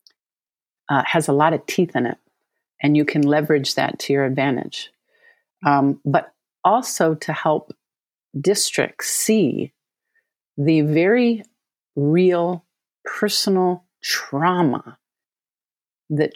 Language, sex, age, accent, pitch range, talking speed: English, female, 50-69, American, 140-170 Hz, 105 wpm